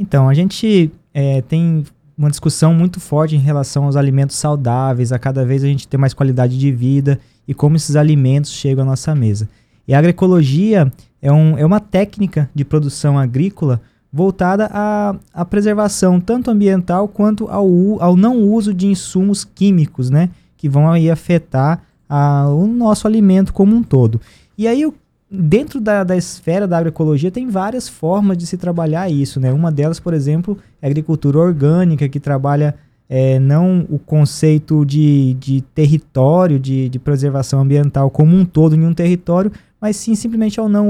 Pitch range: 140-200 Hz